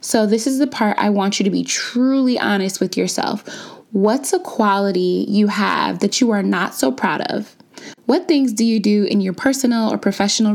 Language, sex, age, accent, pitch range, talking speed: English, female, 20-39, American, 195-230 Hz, 205 wpm